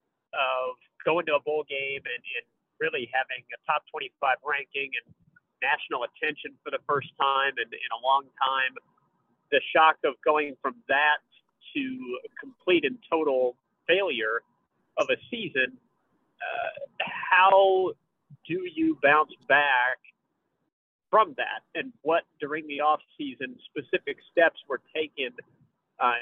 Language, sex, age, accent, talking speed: English, male, 40-59, American, 135 wpm